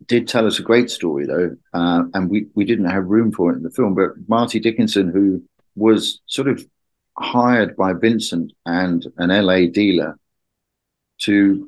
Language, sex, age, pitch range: English, male, 50-69, 95-110 Hz